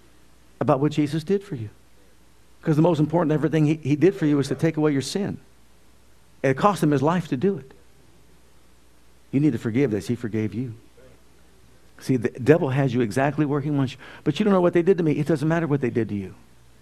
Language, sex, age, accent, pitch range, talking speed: English, male, 50-69, American, 110-150 Hz, 230 wpm